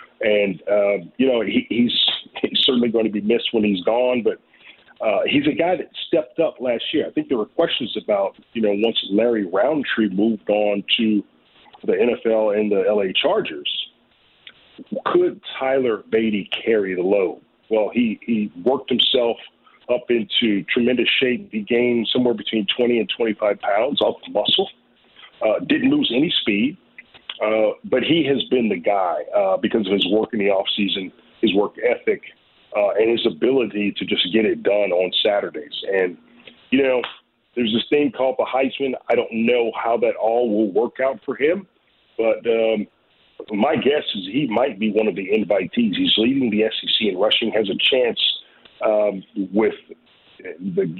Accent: American